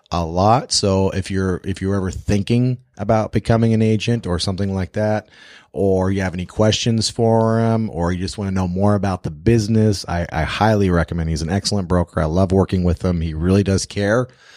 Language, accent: English, American